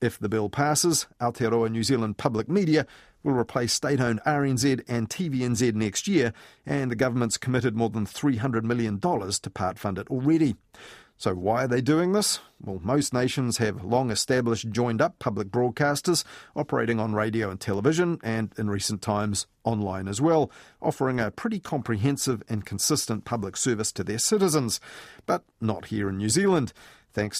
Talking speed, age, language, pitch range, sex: 160 wpm, 40-59, English, 110-140 Hz, male